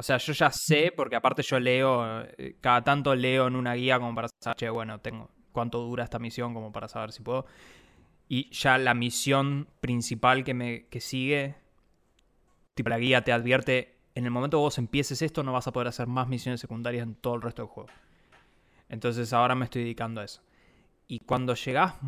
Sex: male